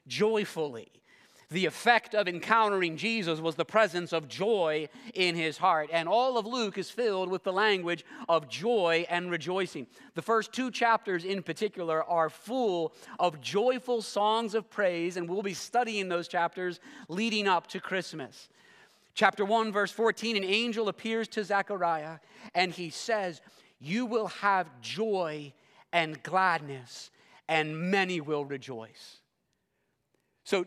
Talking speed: 145 wpm